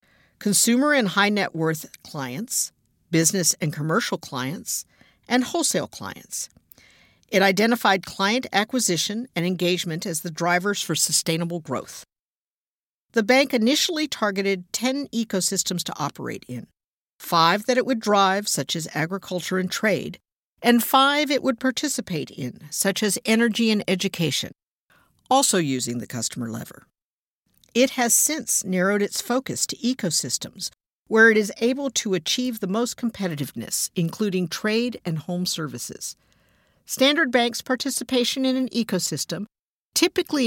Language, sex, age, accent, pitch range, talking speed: English, female, 50-69, American, 170-240 Hz, 130 wpm